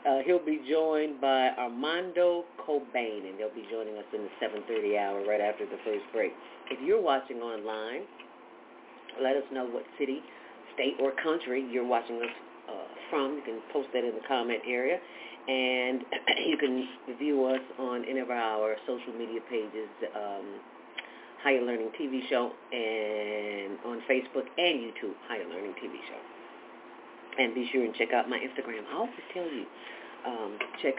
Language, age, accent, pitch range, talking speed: English, 40-59, American, 115-160 Hz, 165 wpm